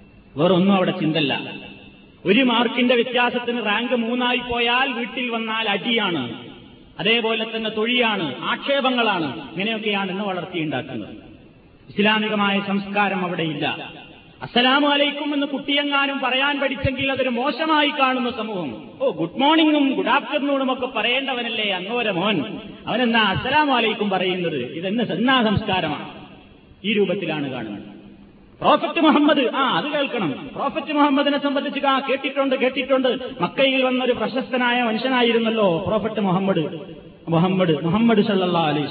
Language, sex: Malayalam, male